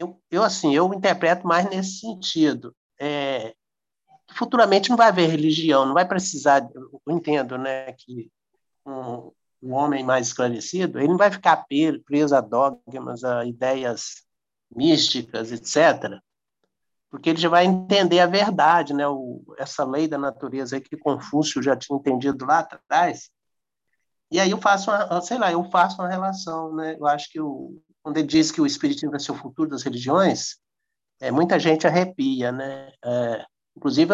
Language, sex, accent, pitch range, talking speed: Portuguese, male, Brazilian, 135-185 Hz, 165 wpm